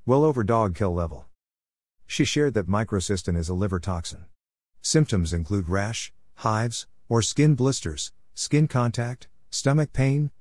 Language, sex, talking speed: English, male, 140 wpm